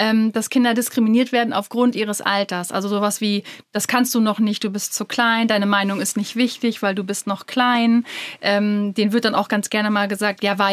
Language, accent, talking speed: German, German, 220 wpm